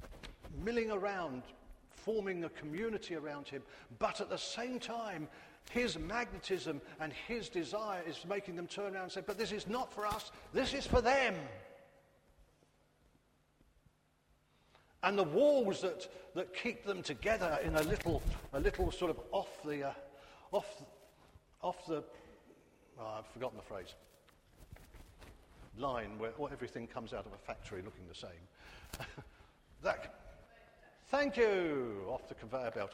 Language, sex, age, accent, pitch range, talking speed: English, male, 50-69, British, 160-240 Hz, 140 wpm